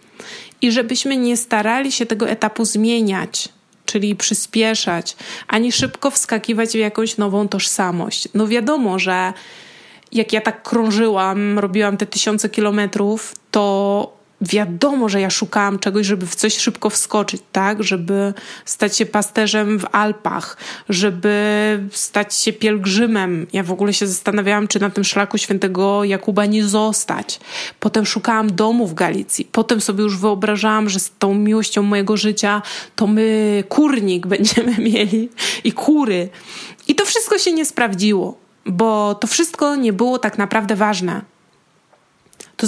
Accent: native